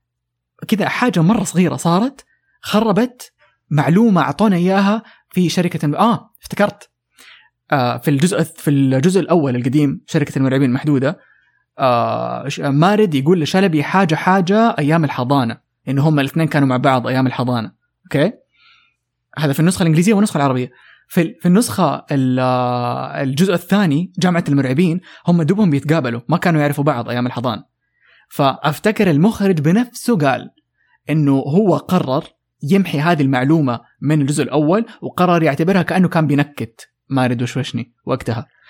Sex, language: male, English